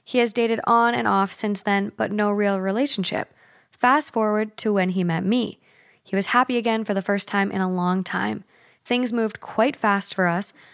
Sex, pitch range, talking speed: female, 195-230 Hz, 205 wpm